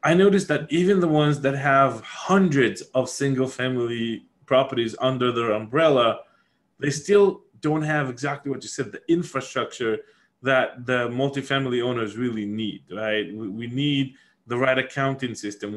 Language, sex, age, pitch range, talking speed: English, male, 20-39, 115-145 Hz, 150 wpm